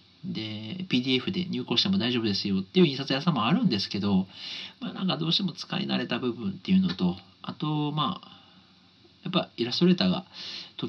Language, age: Japanese, 50-69